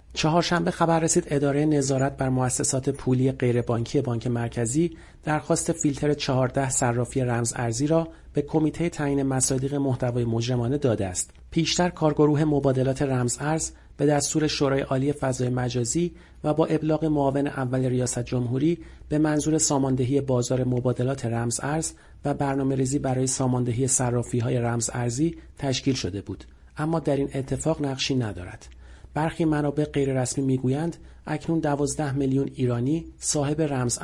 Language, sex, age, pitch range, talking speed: Persian, male, 40-59, 125-155 Hz, 140 wpm